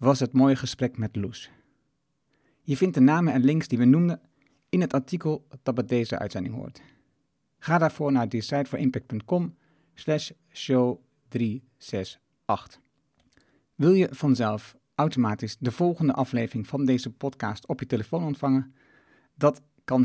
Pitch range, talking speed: 125-150 Hz, 135 wpm